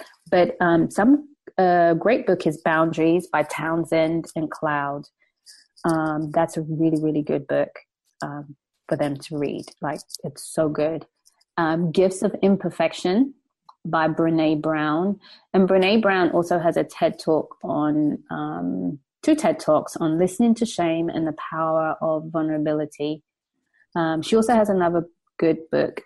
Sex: female